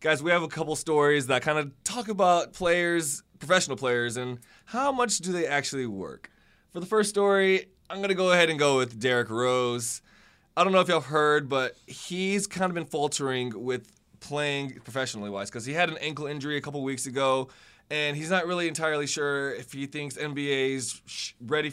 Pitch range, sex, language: 125-170 Hz, male, English